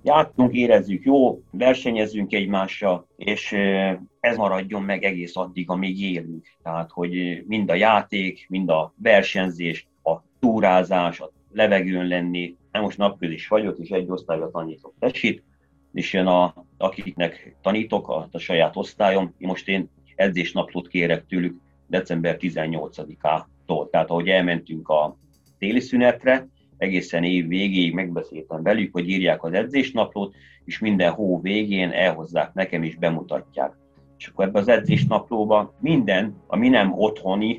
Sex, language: male, Hungarian